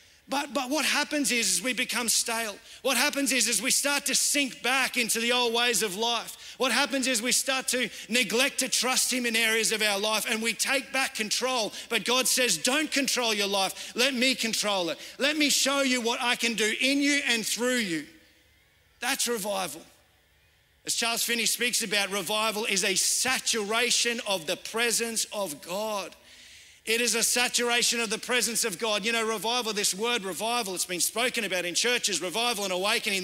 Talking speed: 195 wpm